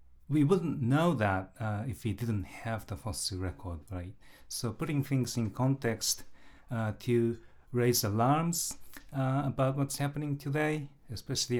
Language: English